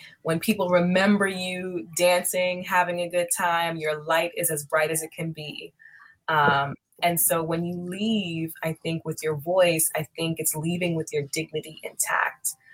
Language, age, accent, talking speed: English, 20-39, American, 175 wpm